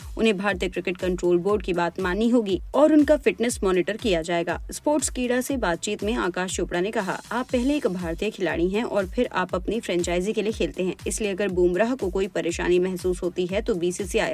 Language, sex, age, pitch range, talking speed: Hindi, female, 30-49, 180-220 Hz, 210 wpm